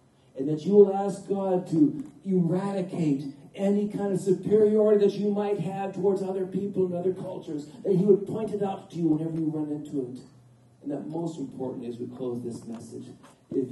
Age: 40-59